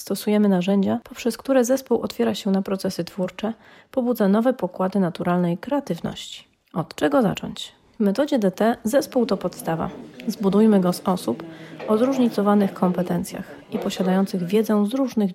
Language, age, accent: Polish, 30-49, native